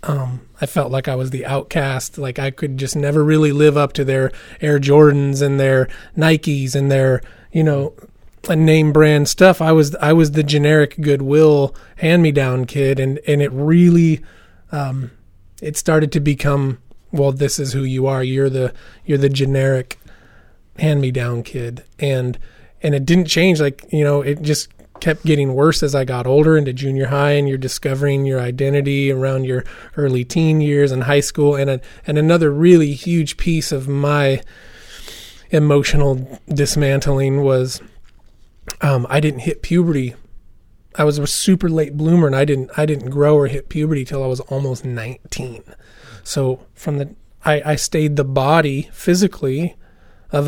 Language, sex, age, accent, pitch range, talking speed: English, male, 30-49, American, 135-150 Hz, 170 wpm